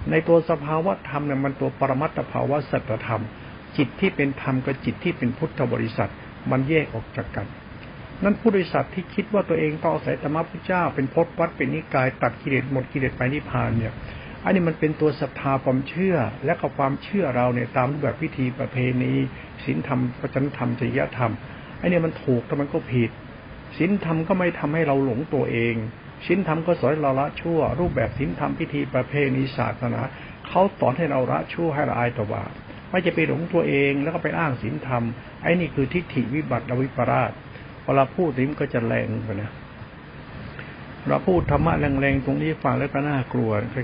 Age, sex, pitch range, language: 60-79, male, 120-155 Hz, Thai